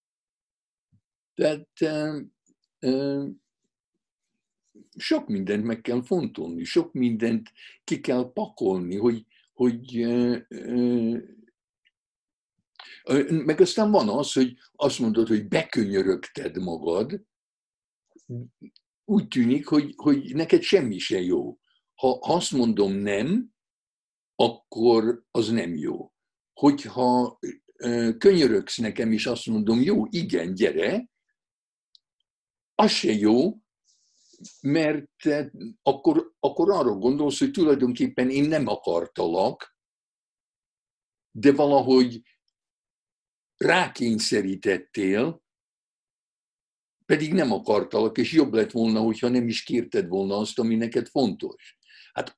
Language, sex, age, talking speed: Hungarian, male, 60-79, 100 wpm